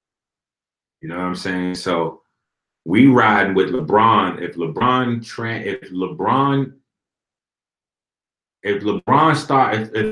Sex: male